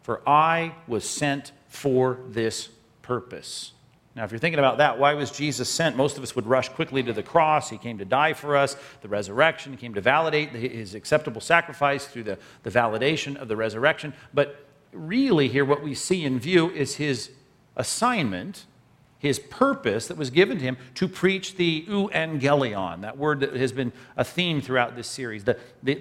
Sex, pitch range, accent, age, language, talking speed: male, 125-150 Hz, American, 50-69, English, 185 wpm